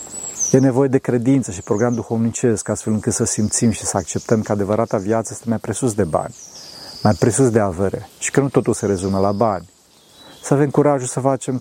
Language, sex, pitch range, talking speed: Romanian, male, 105-135 Hz, 200 wpm